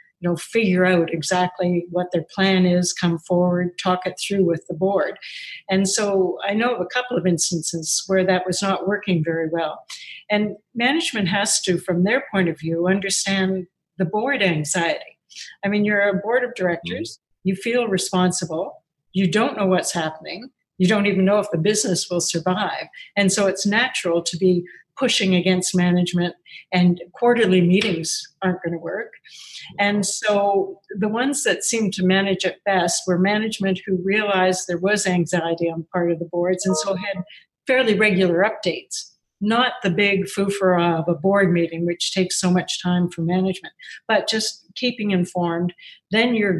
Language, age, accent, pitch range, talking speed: English, 60-79, American, 175-205 Hz, 175 wpm